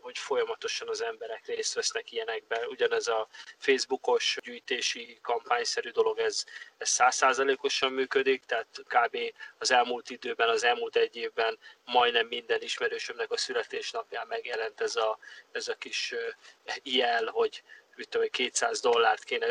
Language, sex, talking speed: Hungarian, male, 130 wpm